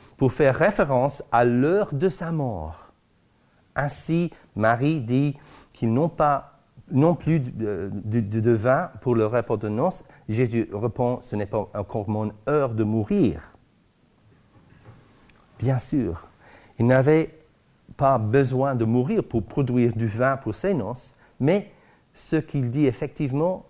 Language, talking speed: French, 140 wpm